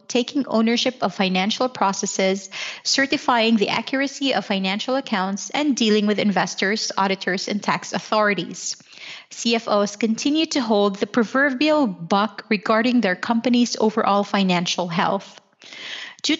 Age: 30-49